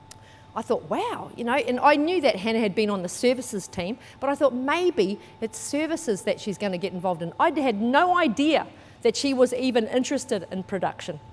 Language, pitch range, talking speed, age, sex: English, 195-280 Hz, 210 wpm, 40-59, female